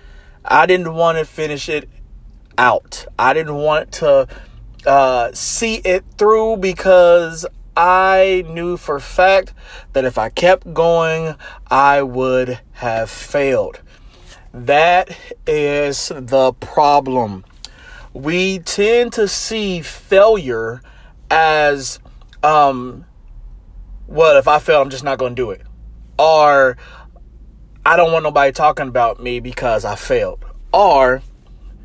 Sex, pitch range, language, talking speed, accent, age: male, 120-180 Hz, English, 120 wpm, American, 30-49